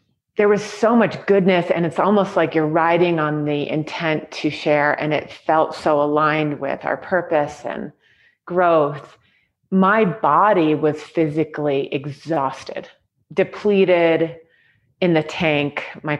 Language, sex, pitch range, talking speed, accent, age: English, female, 150-180 Hz, 135 wpm, American, 30-49